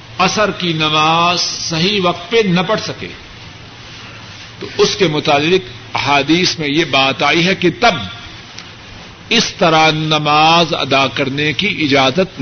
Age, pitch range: 50-69, 130-205 Hz